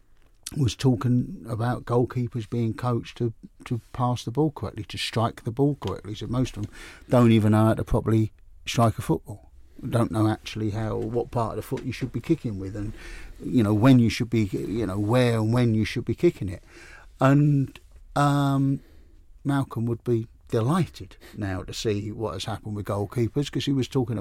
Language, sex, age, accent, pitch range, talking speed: English, male, 50-69, British, 105-130 Hz, 200 wpm